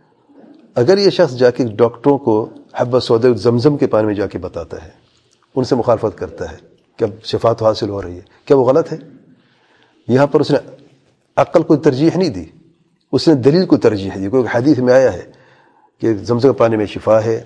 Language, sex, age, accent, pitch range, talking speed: English, male, 40-59, Indian, 120-155 Hz, 195 wpm